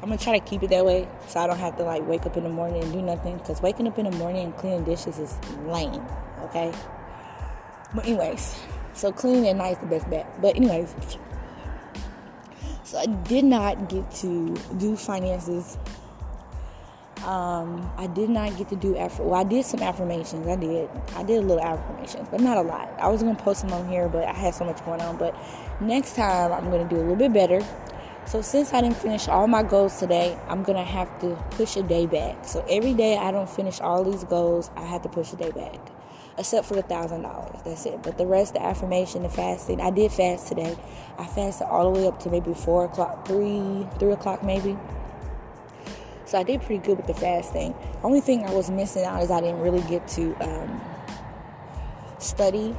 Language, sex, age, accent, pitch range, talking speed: English, female, 20-39, American, 175-205 Hz, 220 wpm